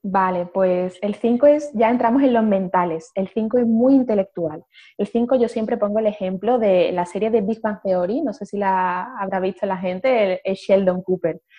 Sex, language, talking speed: female, Spanish, 205 wpm